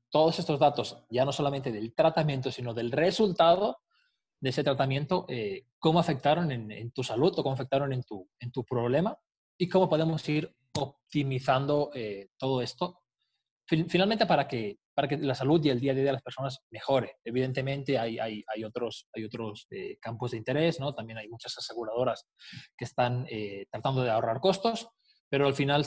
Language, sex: Spanish, male